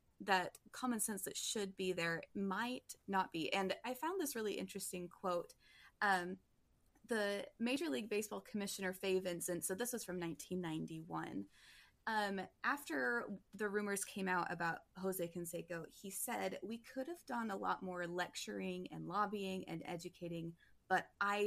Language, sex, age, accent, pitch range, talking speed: English, female, 20-39, American, 175-210 Hz, 155 wpm